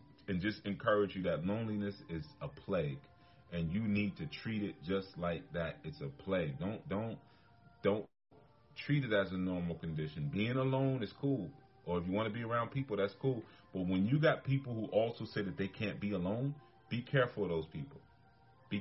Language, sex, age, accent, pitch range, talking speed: English, male, 30-49, American, 95-120 Hz, 200 wpm